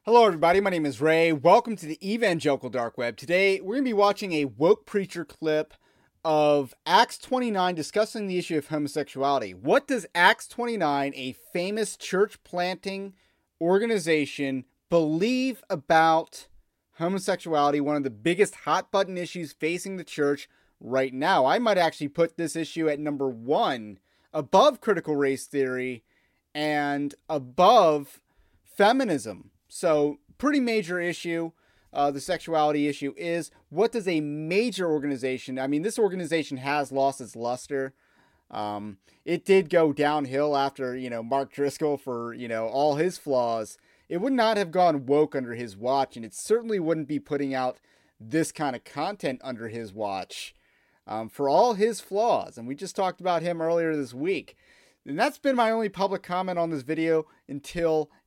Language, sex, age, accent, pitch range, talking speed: English, male, 30-49, American, 140-185 Hz, 160 wpm